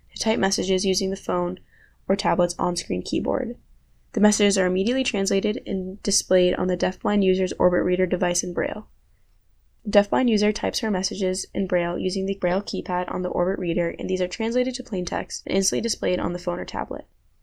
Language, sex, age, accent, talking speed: English, female, 10-29, American, 195 wpm